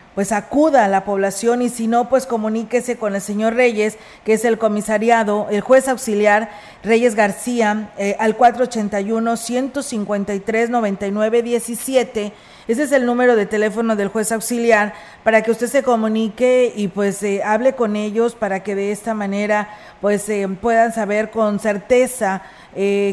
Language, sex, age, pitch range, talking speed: Spanish, female, 40-59, 200-235 Hz, 150 wpm